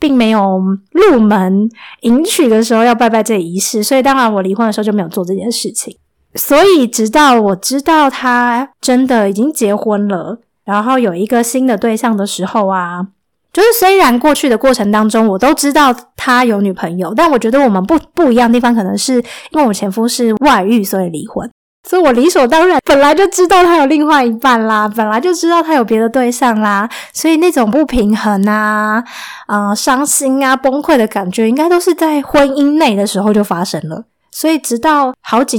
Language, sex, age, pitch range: Chinese, female, 20-39, 210-285 Hz